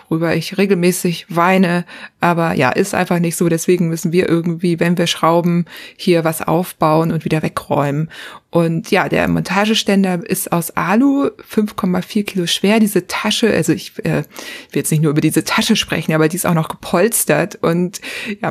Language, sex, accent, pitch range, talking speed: German, female, German, 175-220 Hz, 175 wpm